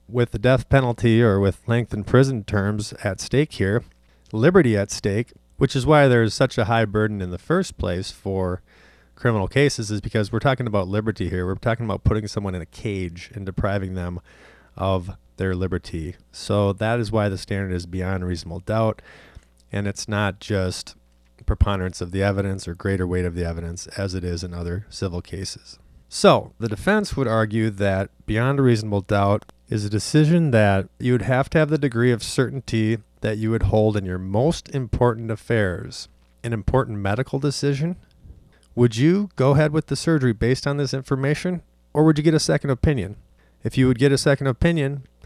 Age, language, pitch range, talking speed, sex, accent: 30-49, English, 95-130 Hz, 190 wpm, male, American